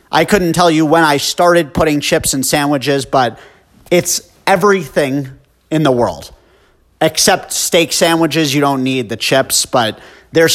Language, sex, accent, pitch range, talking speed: English, male, American, 130-170 Hz, 155 wpm